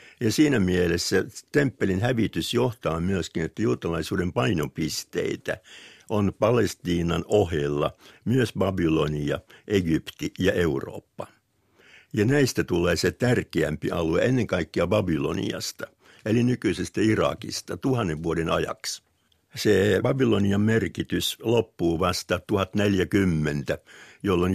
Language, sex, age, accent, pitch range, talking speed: Finnish, male, 60-79, native, 80-105 Hz, 100 wpm